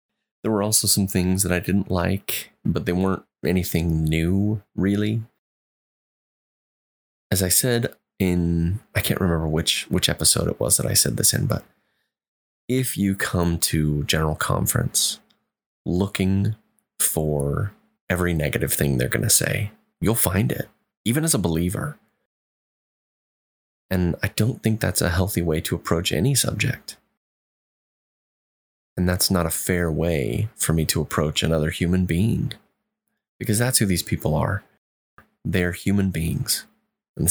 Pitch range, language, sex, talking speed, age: 80-105 Hz, English, male, 145 wpm, 20-39